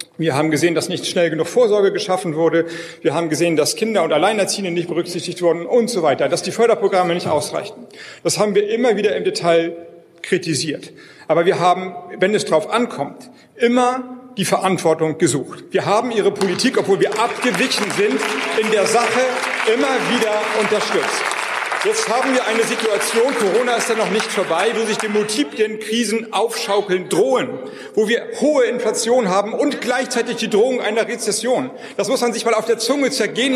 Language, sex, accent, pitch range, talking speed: German, male, German, 195-265 Hz, 175 wpm